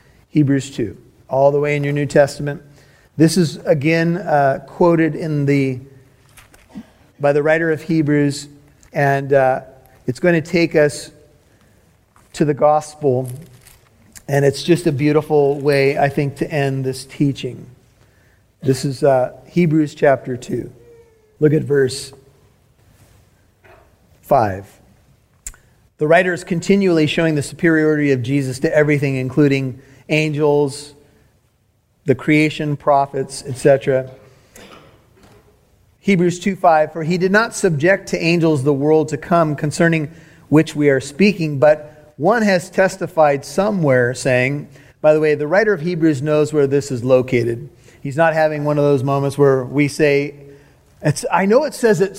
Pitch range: 130-160 Hz